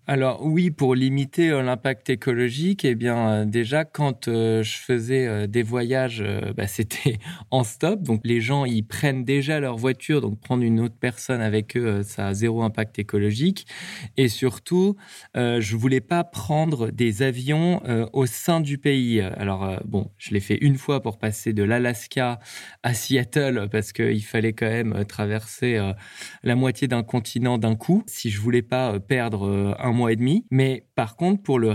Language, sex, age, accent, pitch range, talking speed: French, male, 20-39, French, 110-135 Hz, 195 wpm